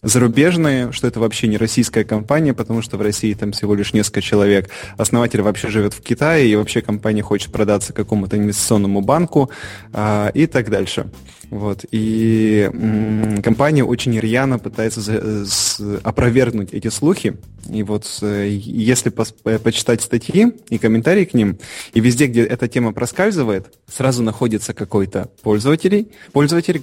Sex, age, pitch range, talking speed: male, 20-39, 105-125 Hz, 135 wpm